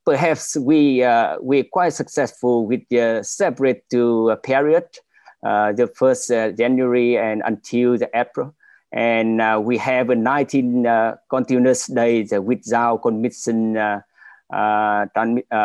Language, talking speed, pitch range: English, 135 wpm, 110-130 Hz